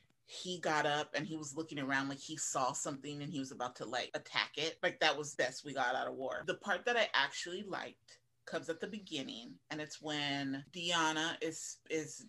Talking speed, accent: 220 wpm, American